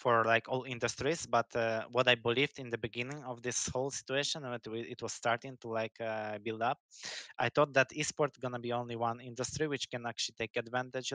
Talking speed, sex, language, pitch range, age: 215 wpm, male, English, 110-130 Hz, 20-39